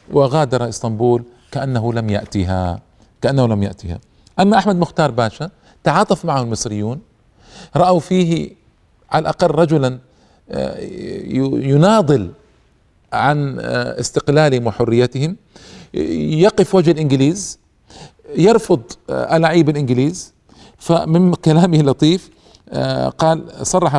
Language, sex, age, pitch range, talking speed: Arabic, male, 40-59, 130-175 Hz, 90 wpm